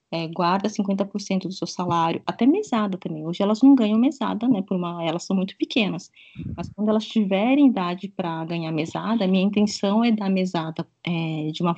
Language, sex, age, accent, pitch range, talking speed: Portuguese, female, 20-39, Brazilian, 185-245 Hz, 195 wpm